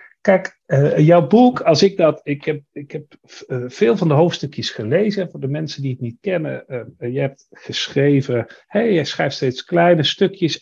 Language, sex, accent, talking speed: Dutch, male, Dutch, 175 wpm